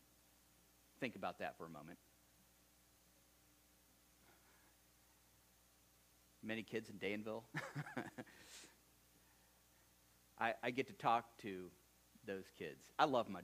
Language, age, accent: English, 50-69, American